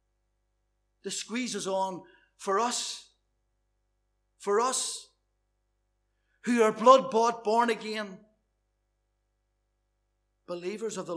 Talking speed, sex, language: 90 wpm, male, English